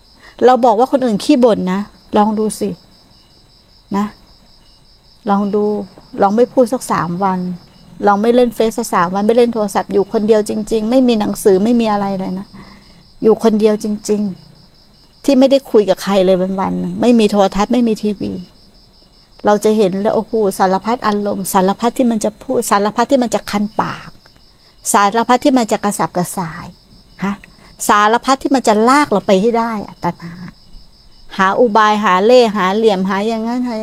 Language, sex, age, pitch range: Thai, female, 60-79, 195-235 Hz